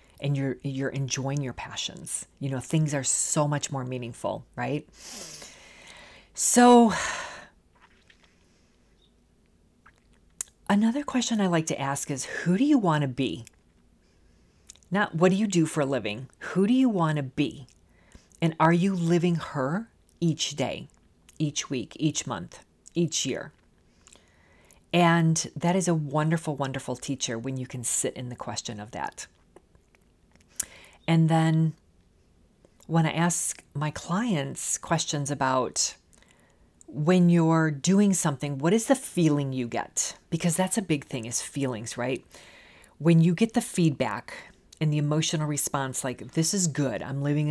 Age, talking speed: 40-59, 145 wpm